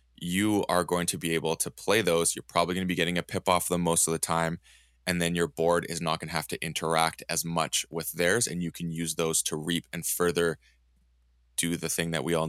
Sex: male